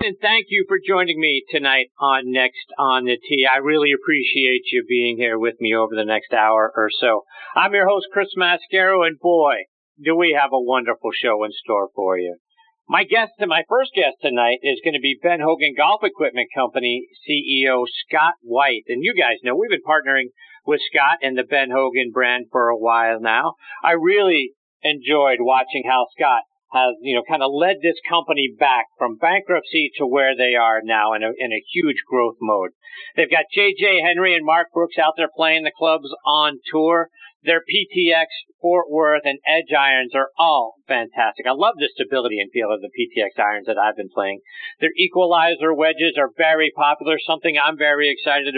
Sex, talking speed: male, 195 wpm